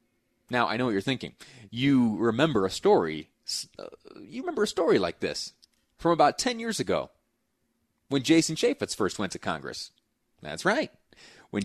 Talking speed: 165 wpm